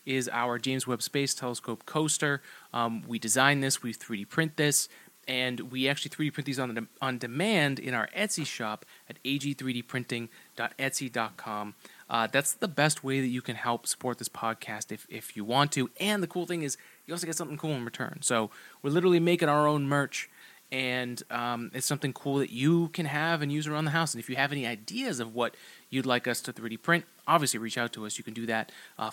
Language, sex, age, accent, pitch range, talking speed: English, male, 20-39, American, 120-150 Hz, 215 wpm